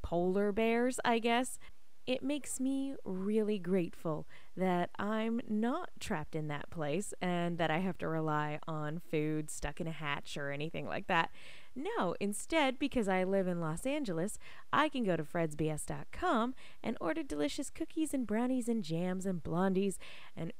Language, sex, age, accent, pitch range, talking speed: English, female, 20-39, American, 165-230 Hz, 165 wpm